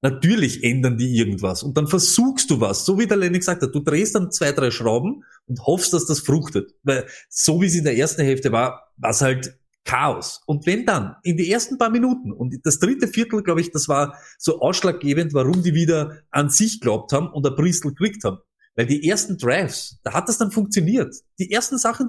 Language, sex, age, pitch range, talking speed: German, male, 30-49, 140-210 Hz, 220 wpm